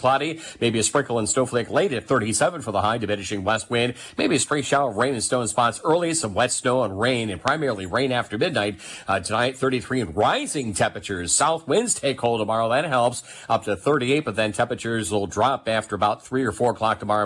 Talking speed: 220 wpm